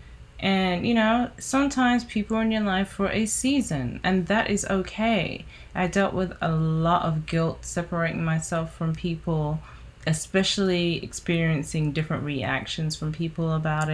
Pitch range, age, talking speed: 135-170 Hz, 20-39, 140 wpm